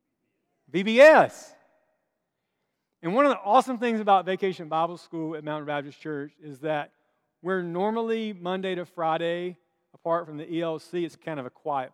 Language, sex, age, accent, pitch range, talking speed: English, male, 40-59, American, 150-185 Hz, 155 wpm